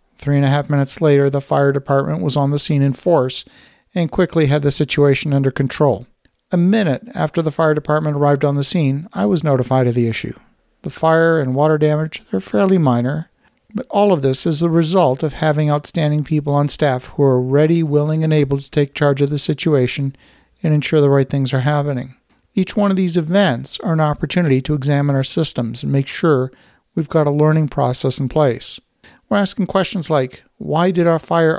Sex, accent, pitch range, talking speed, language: male, American, 140-165 Hz, 205 wpm, English